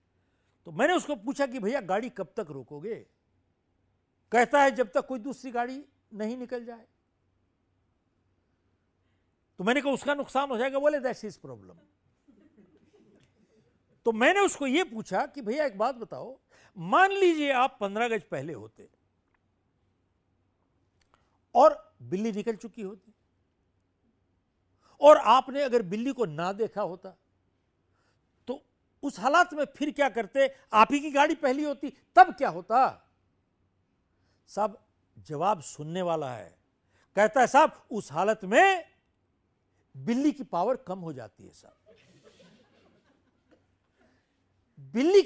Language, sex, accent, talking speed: Hindi, male, native, 125 wpm